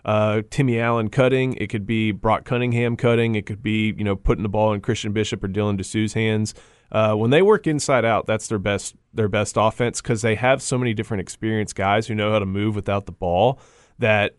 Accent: American